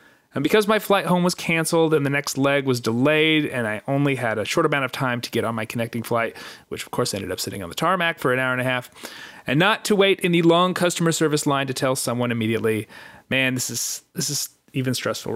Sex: male